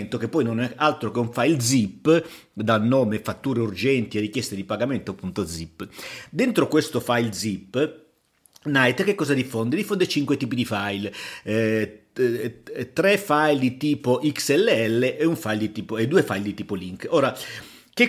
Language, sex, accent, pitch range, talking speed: Italian, male, native, 105-135 Hz, 170 wpm